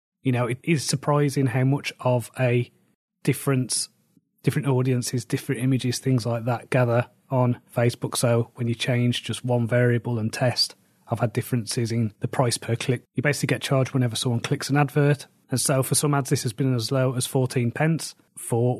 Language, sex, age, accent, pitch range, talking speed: English, male, 30-49, British, 120-140 Hz, 190 wpm